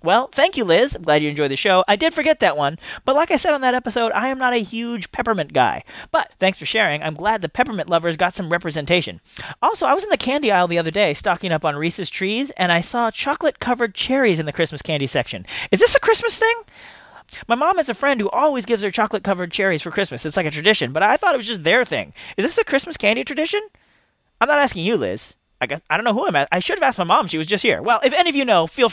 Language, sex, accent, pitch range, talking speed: English, male, American, 175-270 Hz, 275 wpm